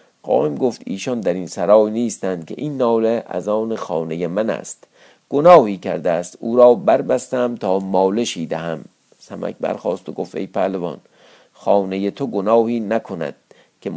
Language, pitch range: Persian, 105-135 Hz